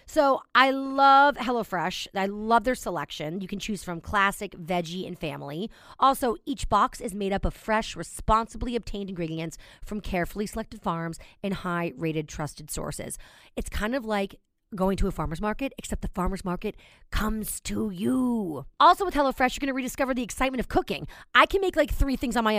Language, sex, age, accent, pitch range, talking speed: English, female, 30-49, American, 195-265 Hz, 185 wpm